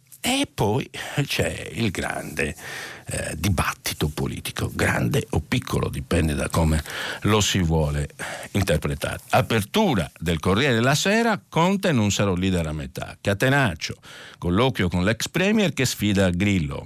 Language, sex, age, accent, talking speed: Italian, male, 60-79, native, 130 wpm